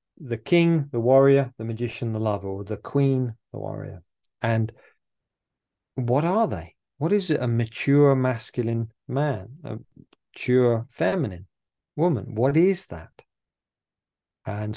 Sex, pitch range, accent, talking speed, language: male, 105-135 Hz, British, 130 wpm, English